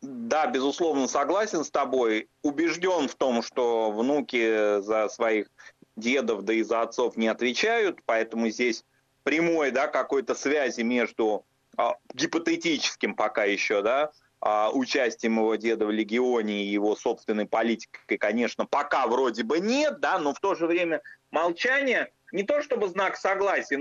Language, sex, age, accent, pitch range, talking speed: Russian, male, 30-49, native, 120-170 Hz, 145 wpm